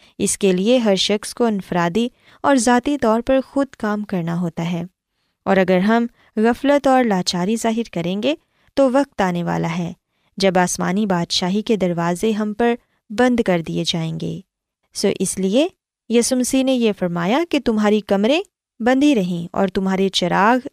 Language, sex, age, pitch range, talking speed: Urdu, female, 20-39, 185-240 Hz, 165 wpm